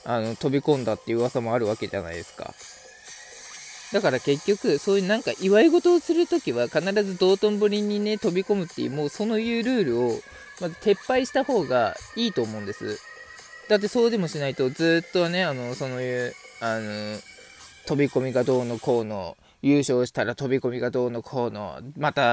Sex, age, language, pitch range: male, 20-39, Japanese, 125-205 Hz